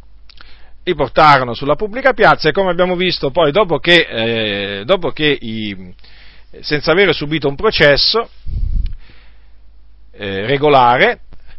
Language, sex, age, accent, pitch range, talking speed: Italian, male, 40-59, native, 115-180 Hz, 120 wpm